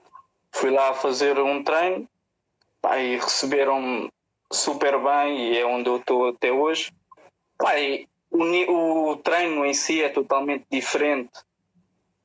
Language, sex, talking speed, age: Portuguese, male, 120 wpm, 20-39